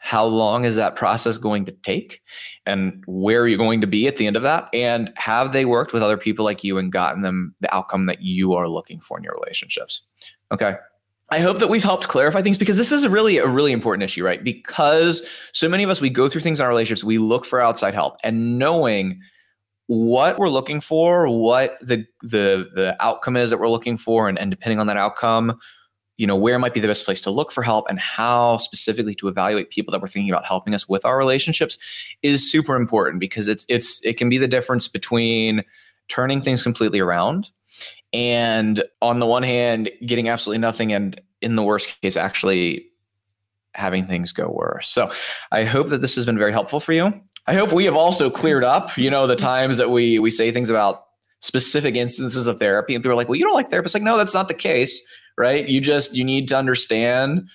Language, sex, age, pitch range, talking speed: English, male, 20-39, 105-135 Hz, 220 wpm